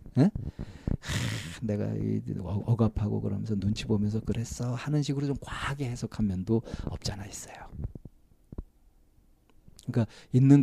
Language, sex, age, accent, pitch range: Korean, male, 40-59, native, 95-120 Hz